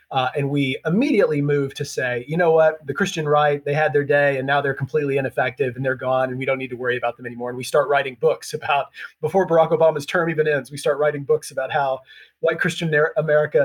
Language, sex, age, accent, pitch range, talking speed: English, male, 30-49, American, 120-150 Hz, 245 wpm